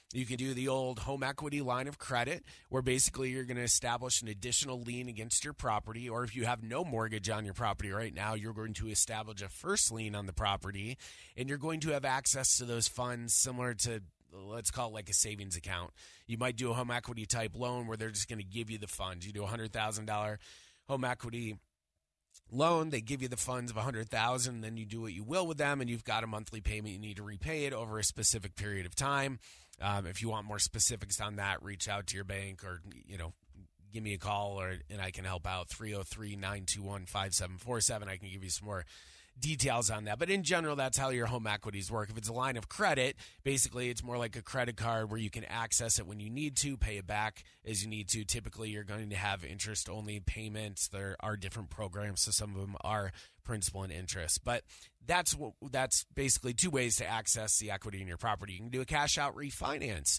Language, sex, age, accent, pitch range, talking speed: English, male, 30-49, American, 100-125 Hz, 230 wpm